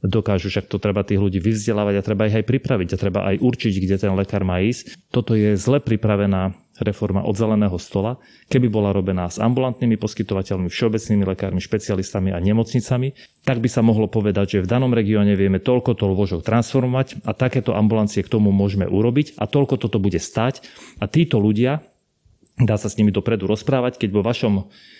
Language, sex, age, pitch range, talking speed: Slovak, male, 30-49, 100-120 Hz, 185 wpm